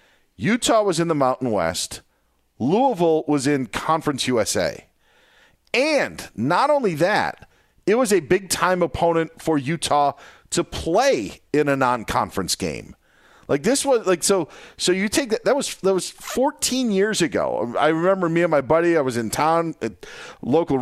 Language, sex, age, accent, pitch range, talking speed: English, male, 40-59, American, 135-195 Hz, 165 wpm